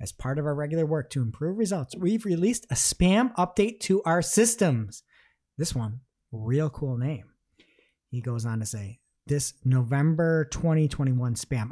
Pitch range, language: 130-175 Hz, English